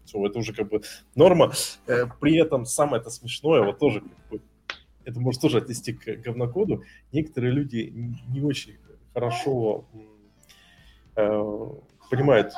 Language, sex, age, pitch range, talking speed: Russian, male, 20-39, 110-155 Hz, 130 wpm